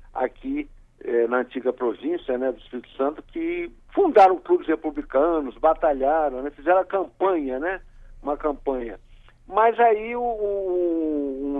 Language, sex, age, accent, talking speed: Portuguese, male, 60-79, Brazilian, 135 wpm